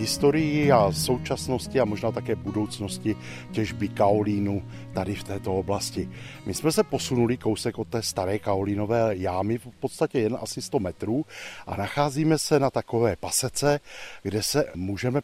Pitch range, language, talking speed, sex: 100-125 Hz, Czech, 150 wpm, male